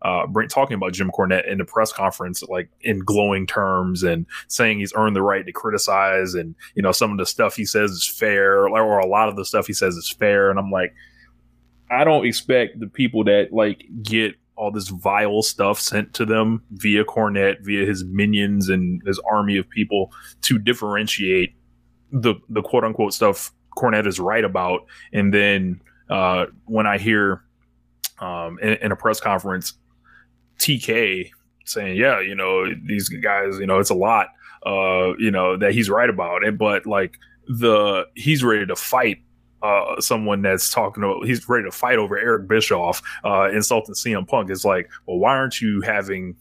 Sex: male